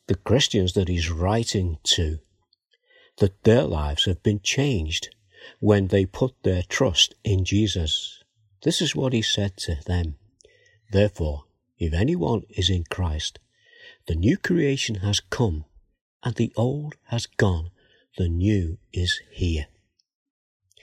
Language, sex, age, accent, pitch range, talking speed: English, male, 60-79, British, 90-120 Hz, 135 wpm